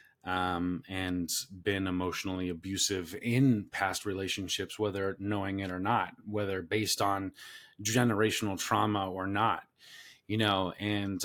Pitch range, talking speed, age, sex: 95-110 Hz, 125 wpm, 30-49, male